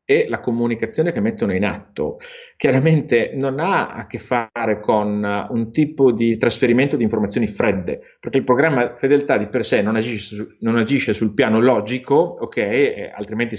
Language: Italian